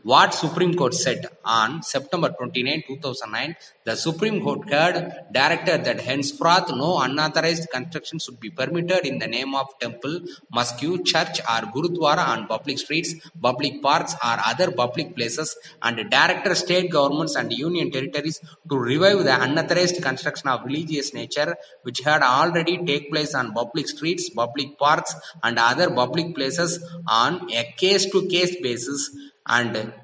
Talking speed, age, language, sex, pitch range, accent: 150 wpm, 20-39, Tamil, male, 130-175 Hz, native